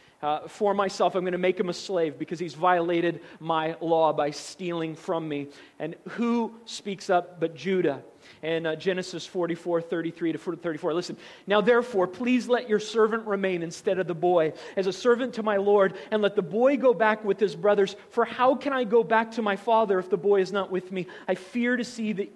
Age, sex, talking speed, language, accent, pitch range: 40-59, male, 210 wpm, English, American, 165-220 Hz